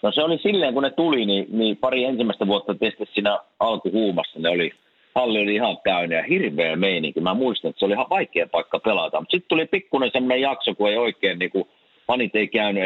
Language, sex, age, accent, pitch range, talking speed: Finnish, male, 50-69, native, 100-130 Hz, 215 wpm